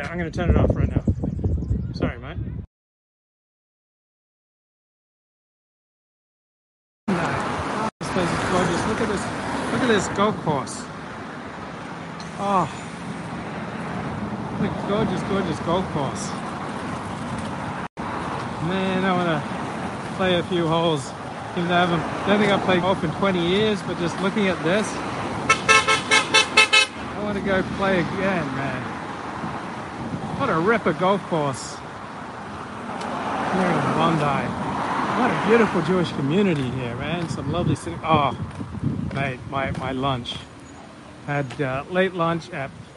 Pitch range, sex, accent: 135-185 Hz, male, American